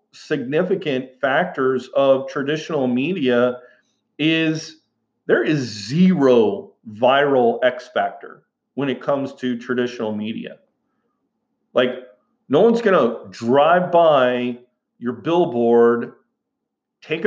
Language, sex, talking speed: English, male, 95 wpm